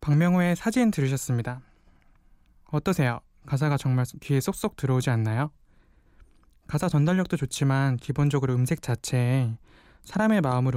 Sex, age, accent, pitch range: male, 20-39, native, 130-170 Hz